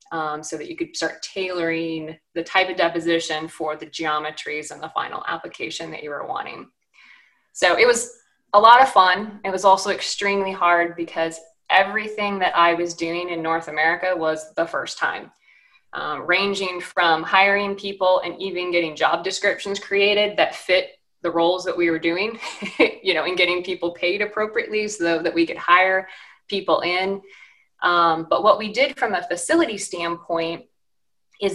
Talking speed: 170 wpm